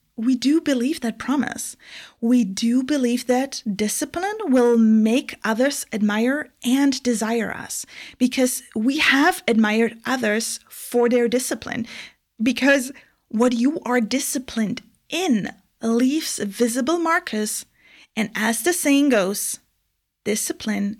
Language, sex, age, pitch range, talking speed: English, female, 30-49, 215-265 Hz, 115 wpm